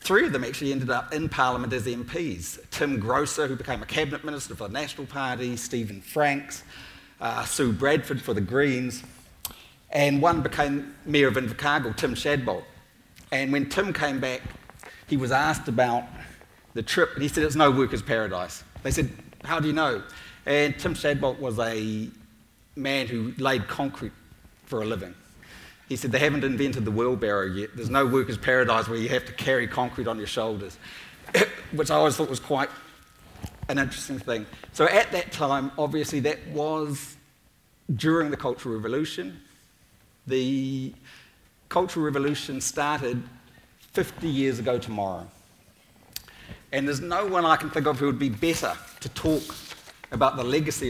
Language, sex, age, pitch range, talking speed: English, male, 30-49, 115-145 Hz, 165 wpm